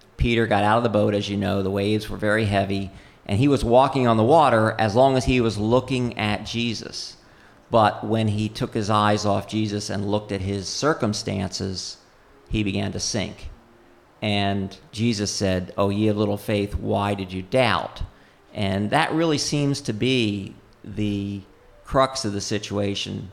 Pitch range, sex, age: 100-110 Hz, male, 50-69